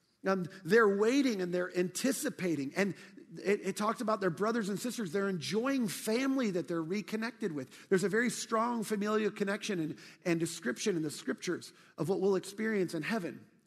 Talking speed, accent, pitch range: 170 wpm, American, 185-235 Hz